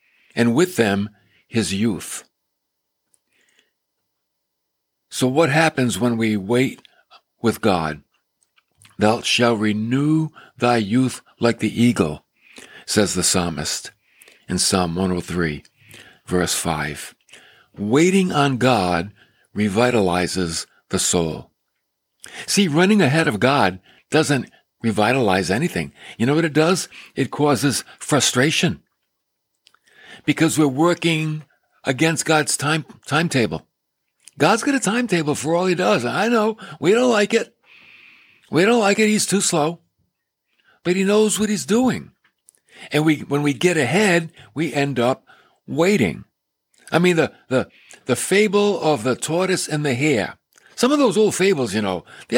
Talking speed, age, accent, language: 130 wpm, 60-79, American, English